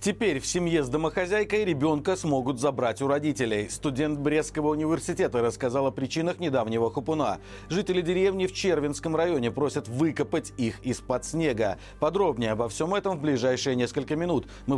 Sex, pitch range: male, 120-160 Hz